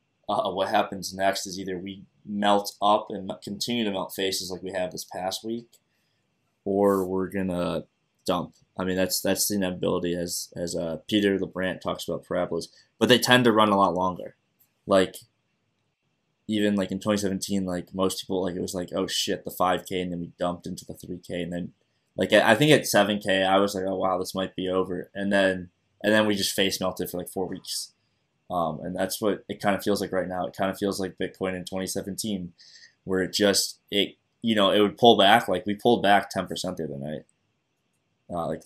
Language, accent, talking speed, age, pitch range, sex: English, American, 215 wpm, 20-39, 90-100 Hz, male